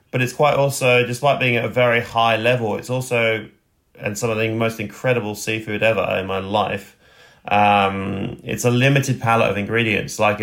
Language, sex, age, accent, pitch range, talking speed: English, male, 30-49, British, 105-120 Hz, 185 wpm